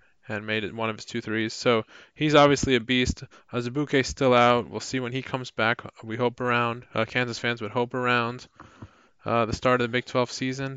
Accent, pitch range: American, 110-130 Hz